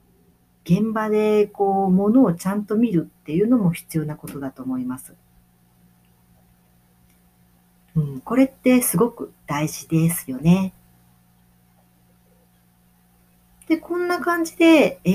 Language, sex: Japanese, female